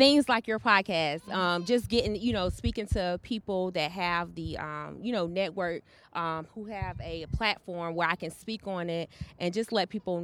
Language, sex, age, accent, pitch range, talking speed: English, female, 30-49, American, 170-210 Hz, 200 wpm